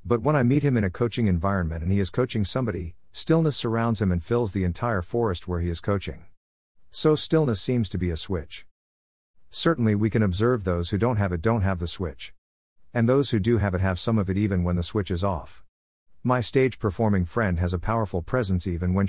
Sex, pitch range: male, 90-115 Hz